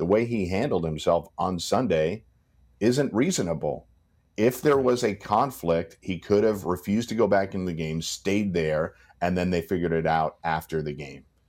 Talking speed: 185 wpm